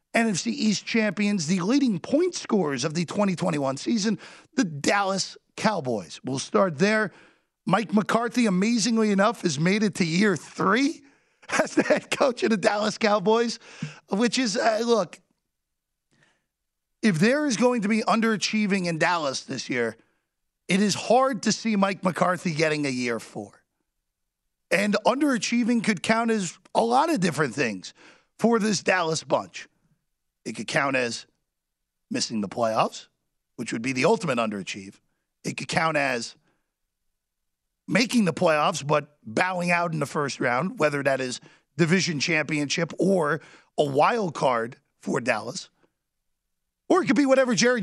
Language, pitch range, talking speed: English, 150-225 Hz, 150 wpm